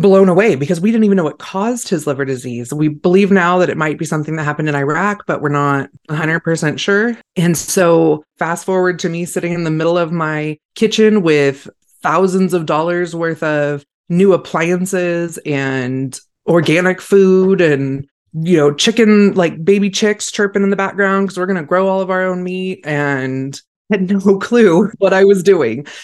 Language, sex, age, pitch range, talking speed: English, female, 20-39, 150-190 Hz, 190 wpm